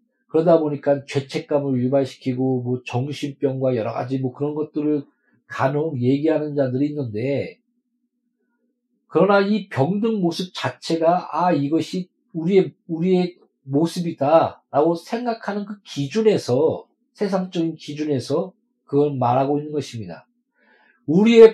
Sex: male